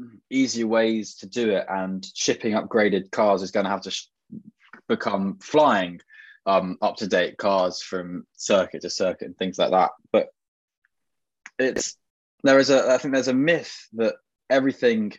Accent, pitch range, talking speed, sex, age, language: British, 95-120 Hz, 160 wpm, male, 20-39, English